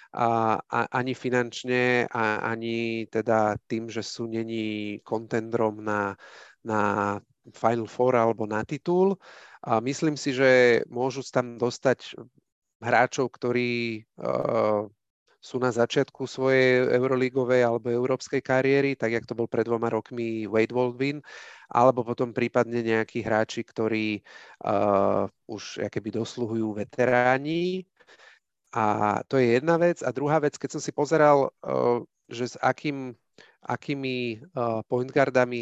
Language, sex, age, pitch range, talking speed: Slovak, male, 30-49, 115-130 Hz, 125 wpm